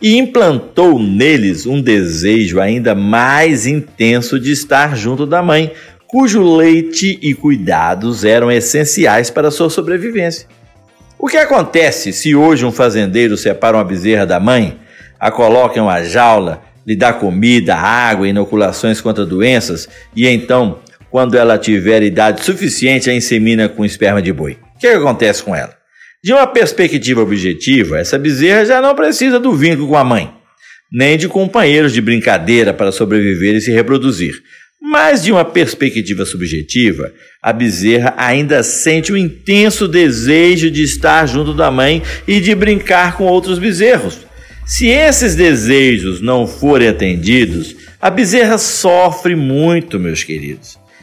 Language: Portuguese